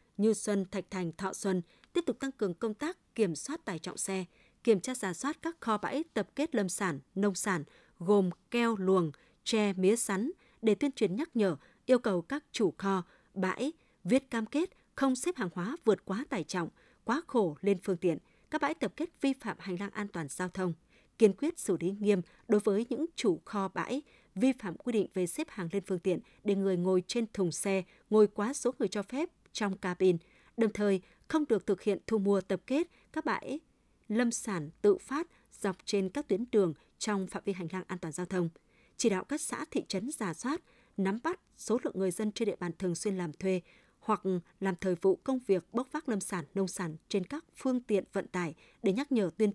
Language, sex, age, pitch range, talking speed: Vietnamese, female, 20-39, 185-245 Hz, 220 wpm